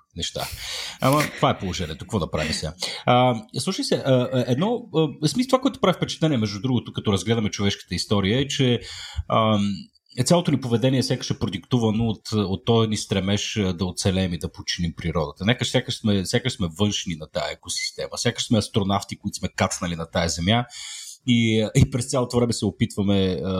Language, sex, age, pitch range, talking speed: Bulgarian, male, 40-59, 95-125 Hz, 180 wpm